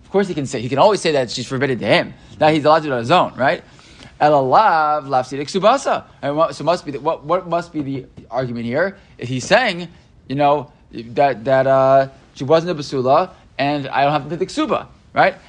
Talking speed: 220 wpm